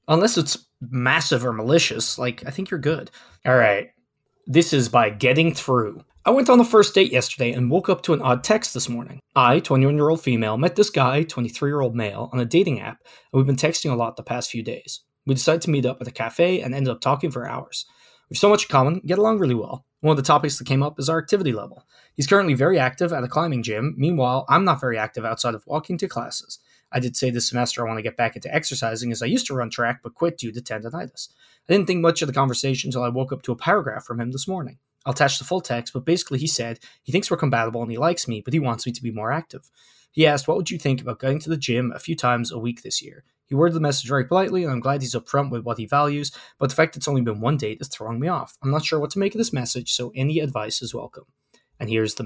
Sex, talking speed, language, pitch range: male, 270 wpm, English, 120-160 Hz